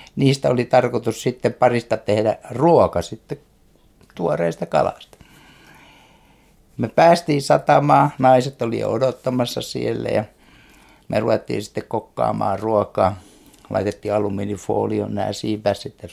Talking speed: 100 wpm